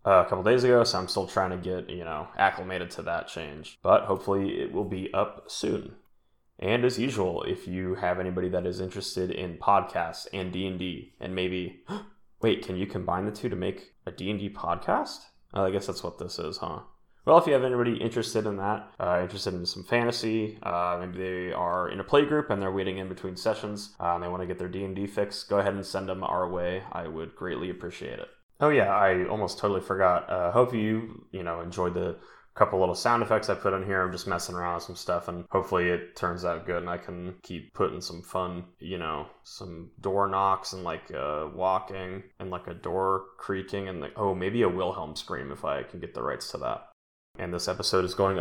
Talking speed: 225 wpm